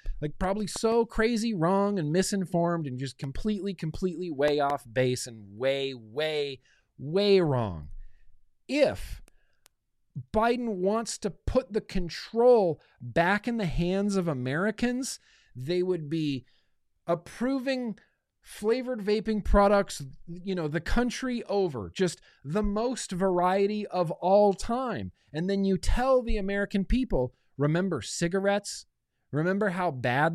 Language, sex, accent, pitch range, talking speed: English, male, American, 145-215 Hz, 125 wpm